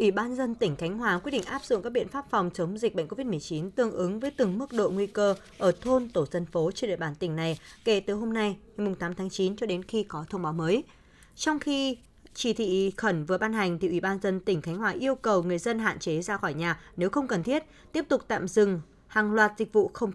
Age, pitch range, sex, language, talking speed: 20-39, 180-240 Hz, female, Vietnamese, 265 wpm